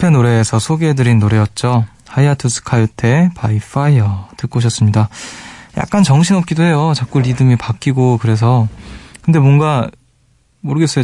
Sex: male